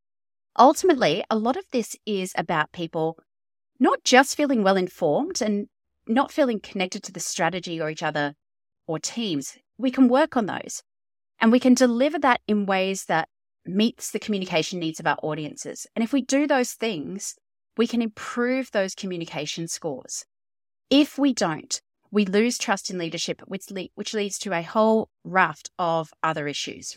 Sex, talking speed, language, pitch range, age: female, 165 wpm, English, 160-235 Hz, 30-49